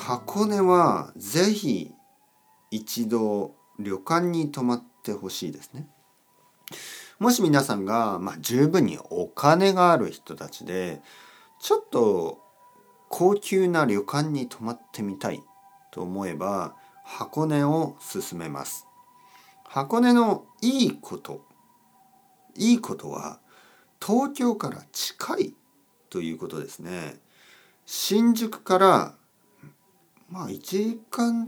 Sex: male